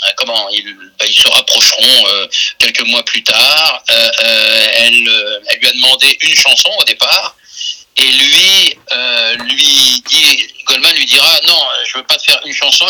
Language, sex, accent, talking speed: French, male, French, 170 wpm